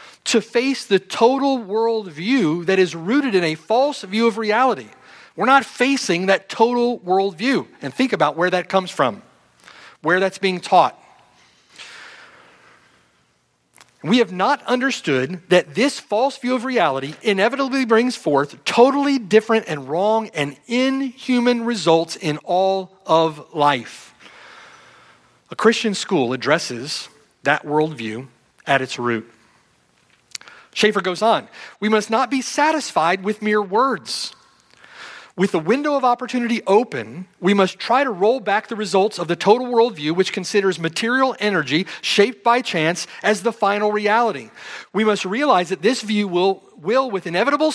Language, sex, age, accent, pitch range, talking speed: English, male, 40-59, American, 170-235 Hz, 145 wpm